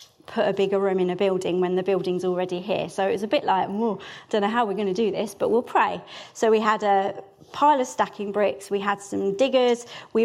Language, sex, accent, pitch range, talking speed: English, female, British, 205-250 Hz, 250 wpm